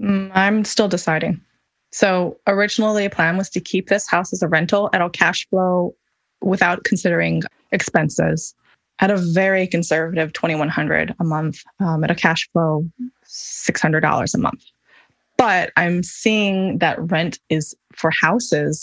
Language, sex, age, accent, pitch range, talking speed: English, female, 20-39, American, 165-215 Hz, 145 wpm